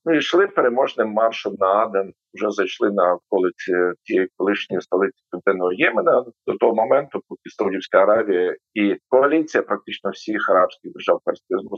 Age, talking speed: 50-69, 145 wpm